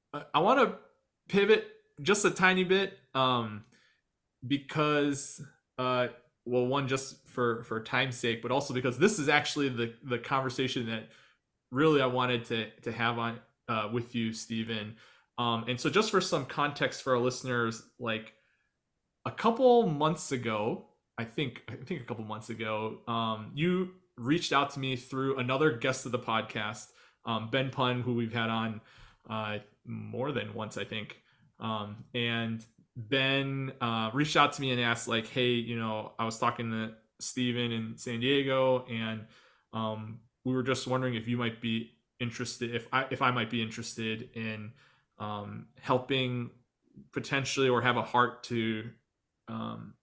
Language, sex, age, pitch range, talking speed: English, male, 20-39, 115-135 Hz, 165 wpm